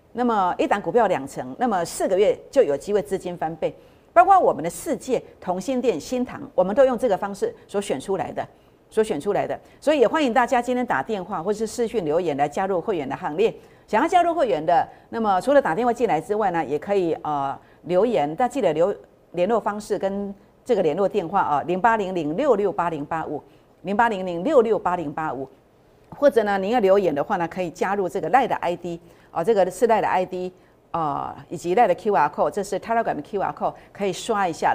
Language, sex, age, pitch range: Chinese, female, 50-69, 175-250 Hz